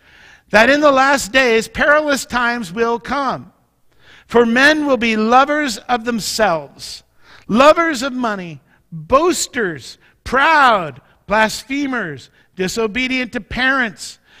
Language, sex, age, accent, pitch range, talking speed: English, male, 50-69, American, 175-260 Hz, 105 wpm